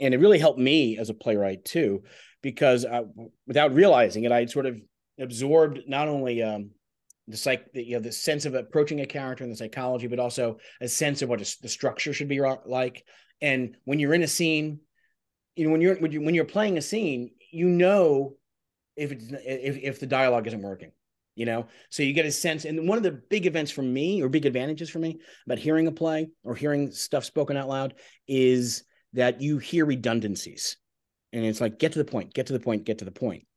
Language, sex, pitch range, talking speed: English, male, 115-150 Hz, 220 wpm